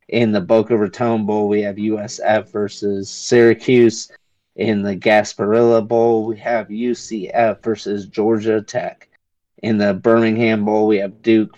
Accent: American